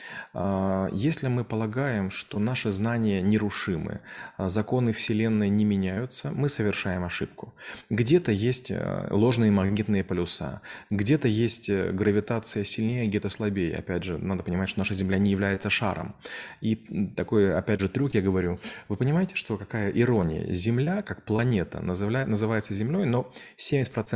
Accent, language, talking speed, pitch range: native, Russian, 135 wpm, 100-120 Hz